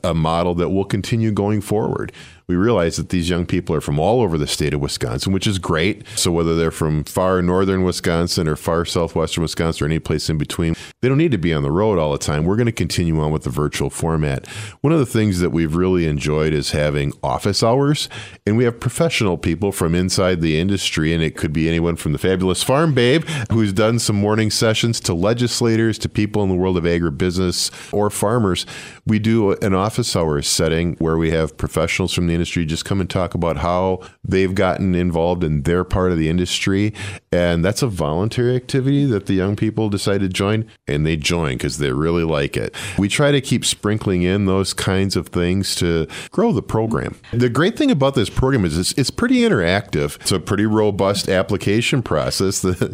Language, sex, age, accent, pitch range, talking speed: English, male, 40-59, American, 85-110 Hz, 210 wpm